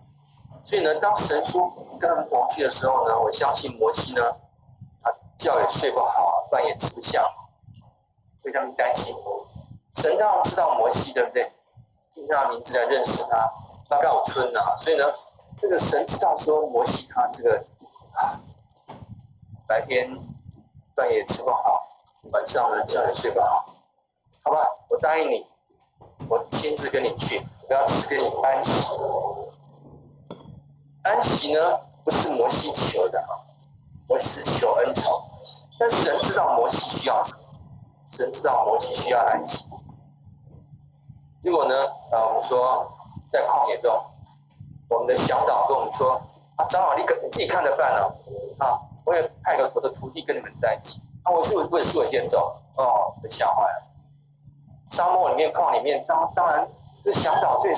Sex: male